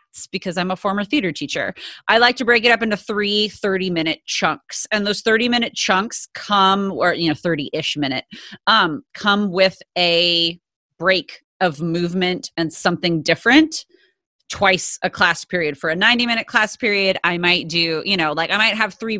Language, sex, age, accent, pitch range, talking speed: English, female, 30-49, American, 170-230 Hz, 175 wpm